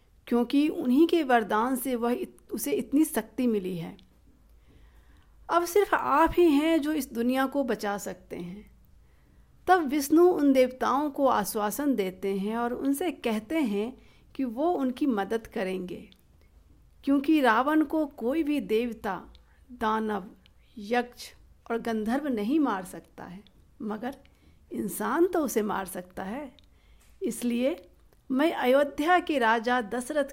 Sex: female